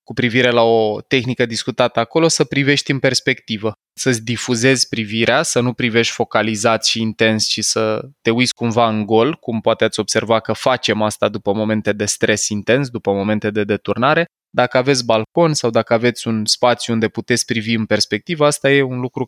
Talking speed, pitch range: 185 wpm, 110-135 Hz